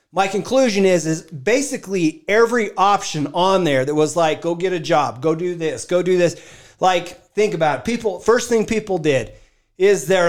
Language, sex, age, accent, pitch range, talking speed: English, male, 40-59, American, 155-200 Hz, 190 wpm